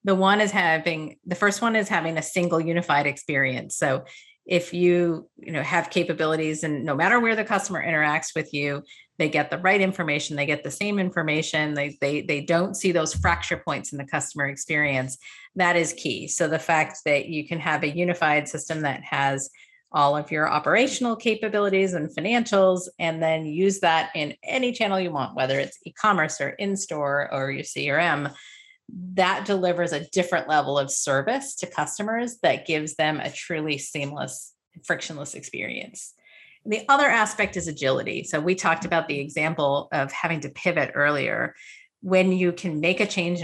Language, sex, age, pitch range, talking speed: English, female, 40-59, 150-185 Hz, 180 wpm